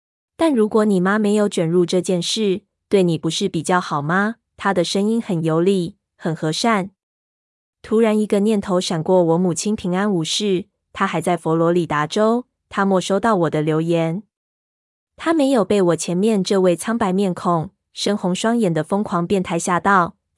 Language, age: Chinese, 20-39